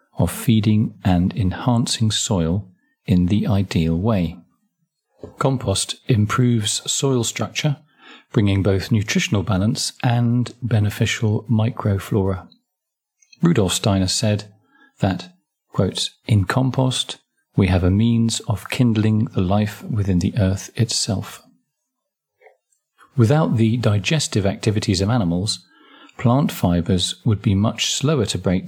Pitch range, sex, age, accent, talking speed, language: 95-125 Hz, male, 40-59, British, 110 wpm, English